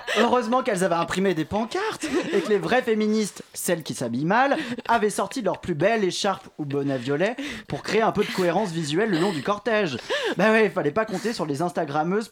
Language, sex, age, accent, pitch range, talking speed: French, male, 20-39, French, 170-235 Hz, 215 wpm